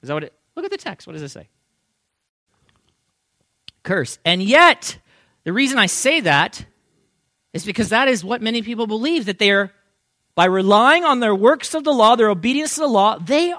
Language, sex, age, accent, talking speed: English, male, 40-59, American, 200 wpm